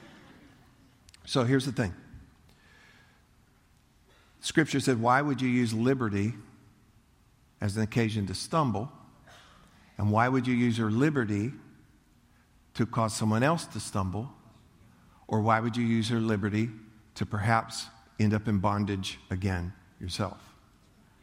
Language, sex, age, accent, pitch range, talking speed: English, male, 50-69, American, 105-125 Hz, 125 wpm